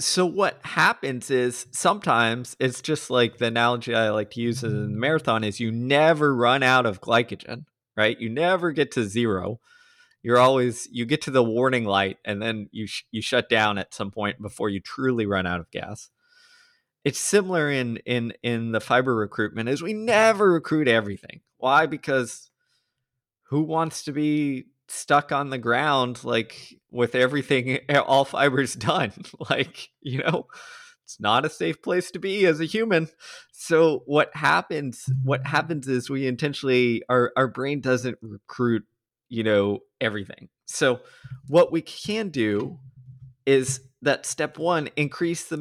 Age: 20-39